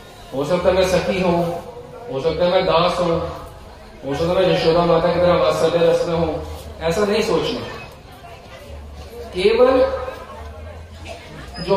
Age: 30-49